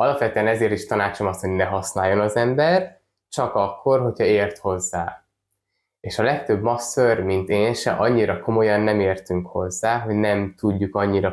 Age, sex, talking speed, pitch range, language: 20-39, male, 165 wpm, 95-120 Hz, Hungarian